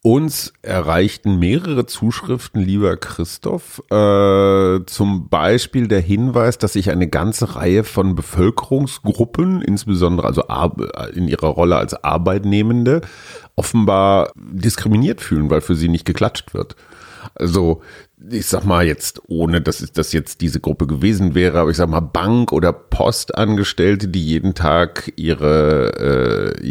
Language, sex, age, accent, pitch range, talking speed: German, male, 40-59, German, 80-110 Hz, 135 wpm